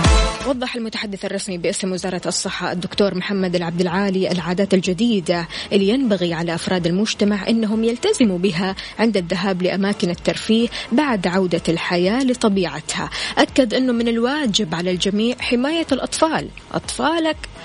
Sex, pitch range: female, 190-240 Hz